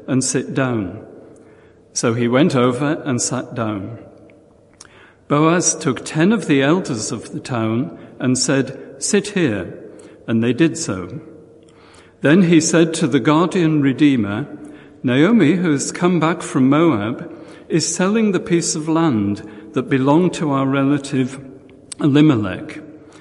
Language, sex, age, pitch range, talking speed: English, male, 60-79, 125-160 Hz, 135 wpm